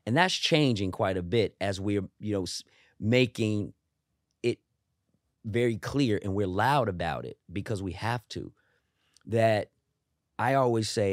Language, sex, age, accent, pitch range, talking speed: English, male, 30-49, American, 95-115 Hz, 145 wpm